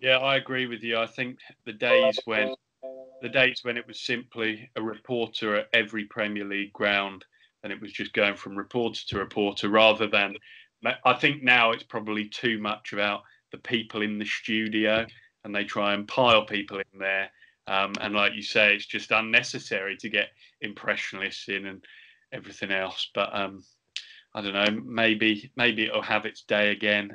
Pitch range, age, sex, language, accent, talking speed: 105-120 Hz, 20-39, male, English, British, 180 wpm